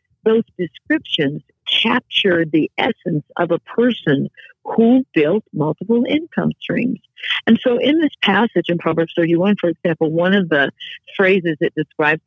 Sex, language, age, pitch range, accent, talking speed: female, English, 60-79, 170-225 Hz, American, 140 wpm